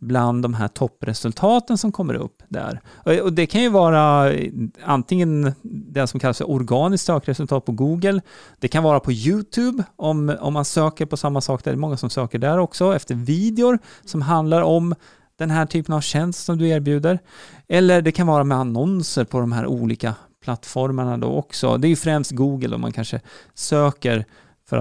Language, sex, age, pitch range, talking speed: Swedish, male, 30-49, 125-175 Hz, 185 wpm